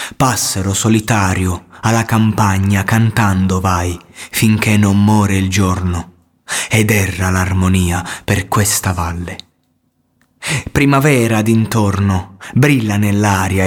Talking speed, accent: 90 wpm, native